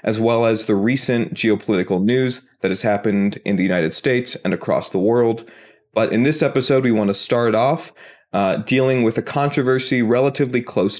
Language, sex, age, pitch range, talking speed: English, male, 20-39, 105-130 Hz, 185 wpm